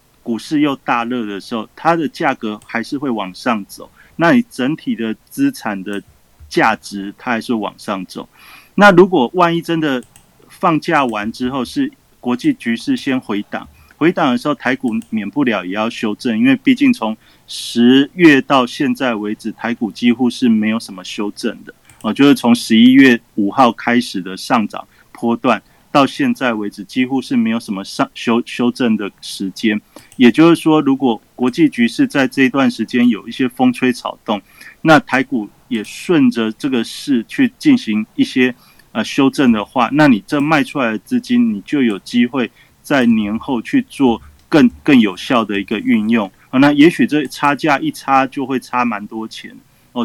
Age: 30-49